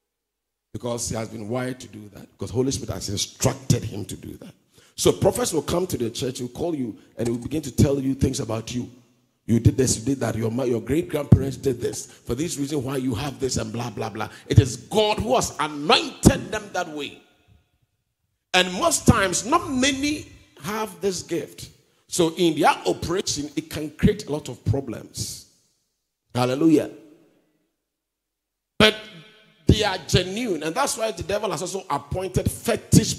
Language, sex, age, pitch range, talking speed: English, male, 50-69, 120-190 Hz, 180 wpm